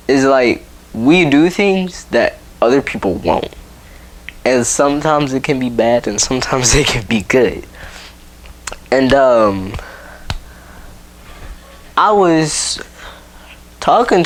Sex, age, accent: male, 10-29, American